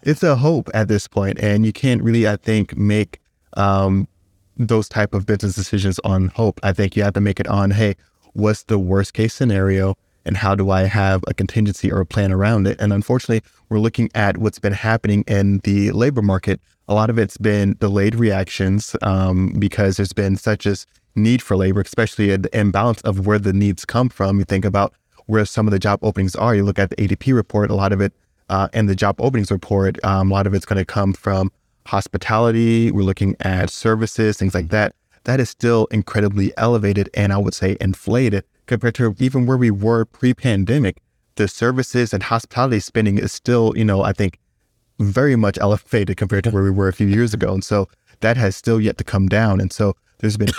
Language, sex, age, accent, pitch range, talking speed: English, male, 20-39, American, 95-110 Hz, 215 wpm